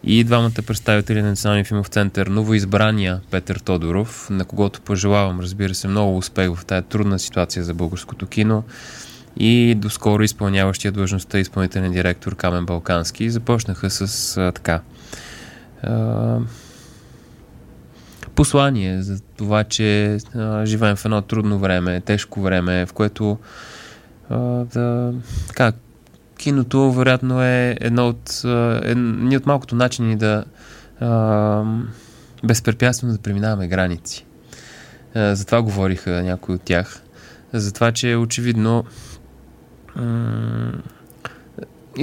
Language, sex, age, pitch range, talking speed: Bulgarian, male, 20-39, 95-120 Hz, 110 wpm